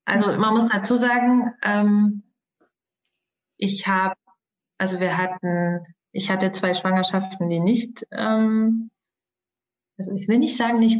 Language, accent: German, German